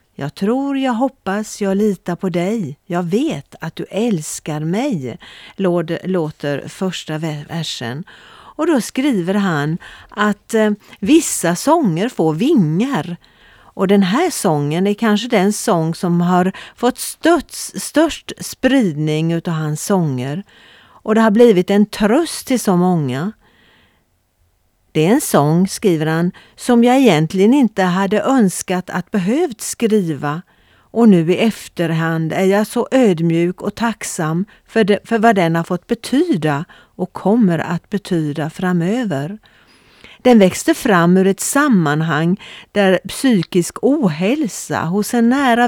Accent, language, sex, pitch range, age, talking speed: native, Swedish, female, 170-225 Hz, 50-69, 130 wpm